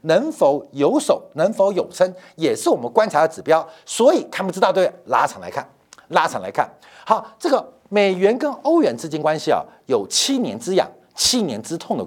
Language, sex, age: Chinese, male, 50-69